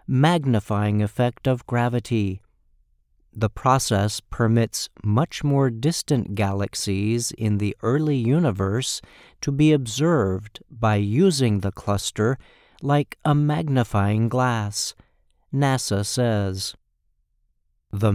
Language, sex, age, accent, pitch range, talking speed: English, male, 50-69, American, 100-130 Hz, 95 wpm